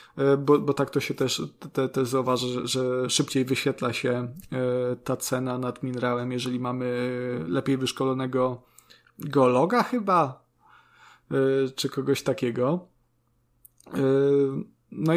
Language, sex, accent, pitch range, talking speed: Polish, male, native, 130-165 Hz, 105 wpm